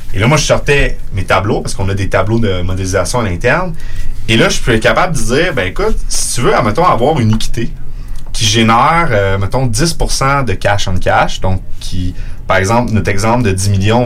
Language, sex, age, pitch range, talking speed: French, male, 30-49, 100-130 Hz, 215 wpm